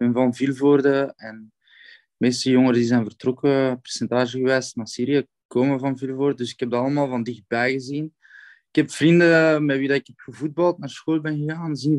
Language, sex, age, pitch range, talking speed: Dutch, male, 20-39, 120-140 Hz, 195 wpm